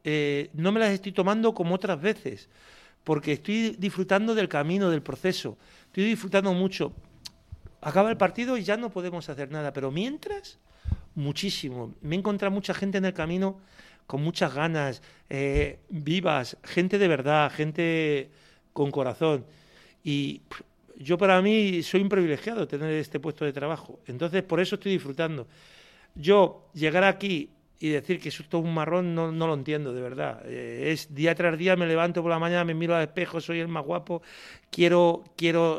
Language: Spanish